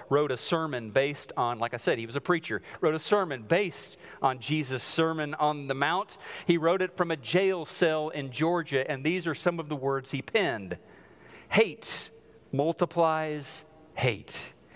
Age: 40-59